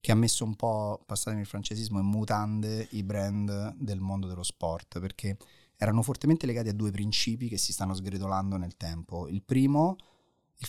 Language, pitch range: Italian, 100-125 Hz